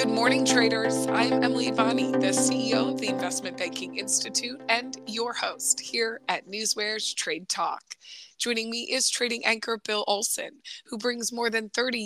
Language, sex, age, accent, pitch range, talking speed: English, female, 20-39, American, 180-235 Hz, 165 wpm